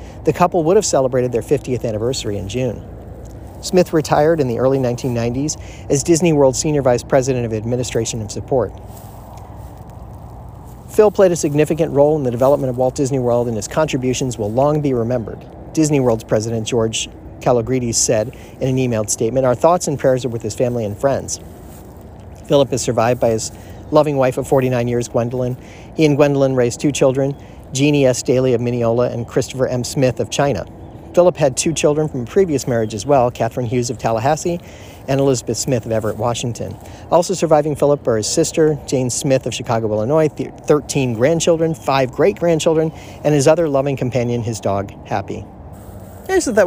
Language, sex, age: English, male, 40-59